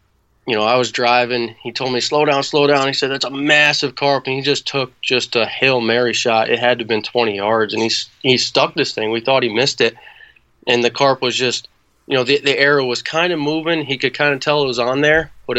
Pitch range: 115-130 Hz